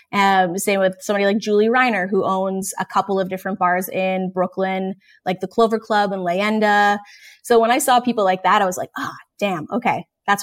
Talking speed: 215 wpm